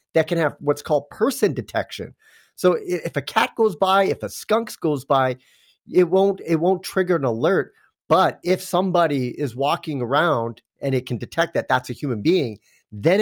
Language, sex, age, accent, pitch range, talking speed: English, male, 30-49, American, 130-180 Hz, 185 wpm